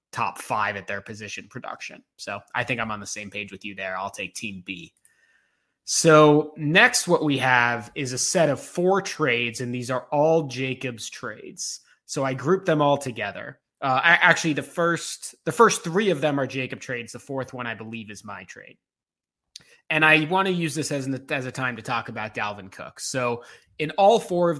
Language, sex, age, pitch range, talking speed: English, male, 20-39, 125-155 Hz, 210 wpm